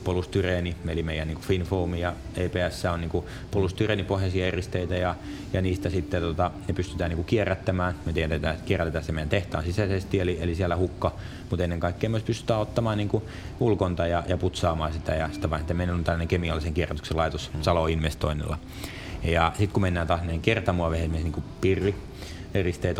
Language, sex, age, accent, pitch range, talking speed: Finnish, male, 30-49, native, 80-95 Hz, 135 wpm